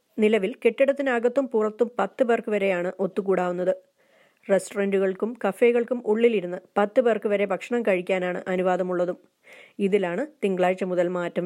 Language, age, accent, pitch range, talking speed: Malayalam, 30-49, native, 195-250 Hz, 105 wpm